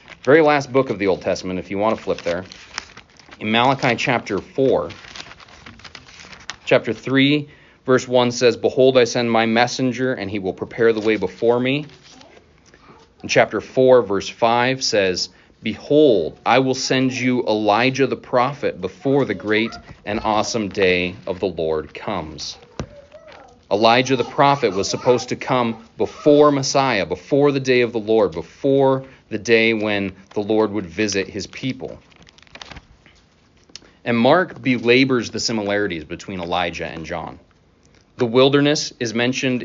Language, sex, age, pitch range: English, male, 30-49, 100-125 Hz